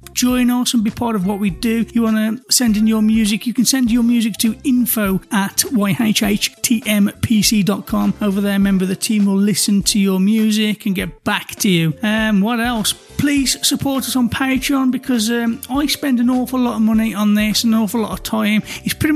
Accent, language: British, English